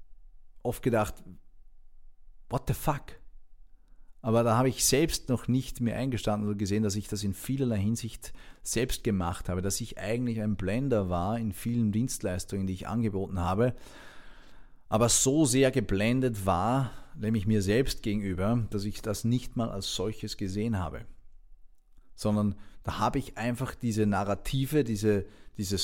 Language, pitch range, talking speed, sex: German, 100-120 Hz, 150 wpm, male